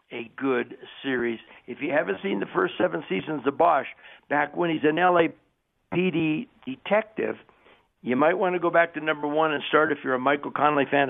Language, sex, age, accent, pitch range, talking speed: English, male, 60-79, American, 145-210 Hz, 195 wpm